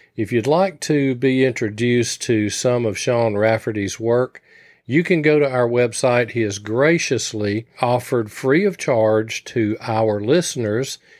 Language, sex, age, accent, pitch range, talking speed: English, male, 40-59, American, 110-130 Hz, 150 wpm